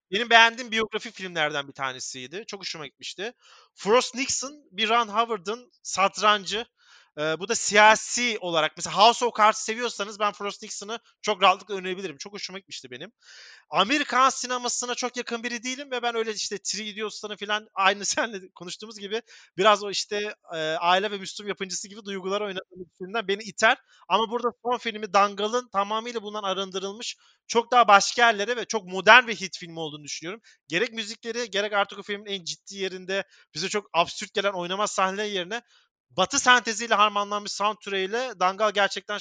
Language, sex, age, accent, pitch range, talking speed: Turkish, male, 30-49, native, 185-220 Hz, 165 wpm